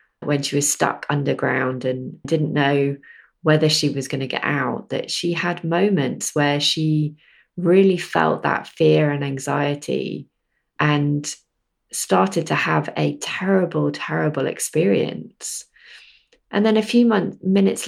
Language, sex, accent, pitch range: English, female, British, 150-190 Hz